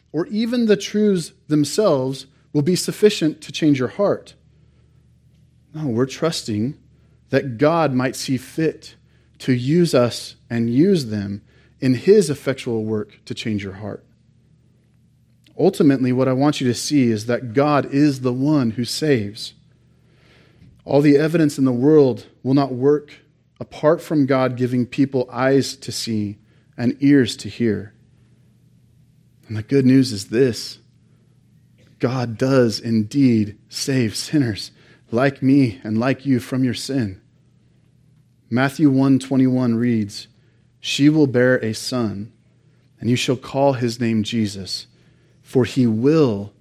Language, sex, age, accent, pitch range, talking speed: English, male, 30-49, American, 120-140 Hz, 140 wpm